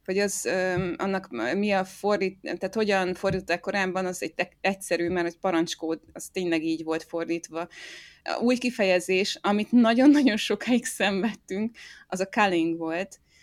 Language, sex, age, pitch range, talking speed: Hungarian, female, 20-39, 170-205 Hz, 150 wpm